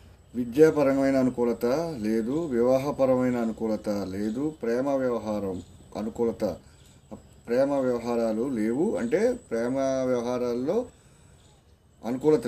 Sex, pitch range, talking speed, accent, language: male, 110-140 Hz, 75 wpm, native, Telugu